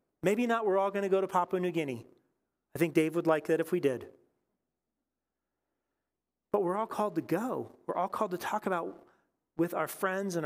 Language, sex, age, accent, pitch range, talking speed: English, male, 40-59, American, 130-185 Hz, 205 wpm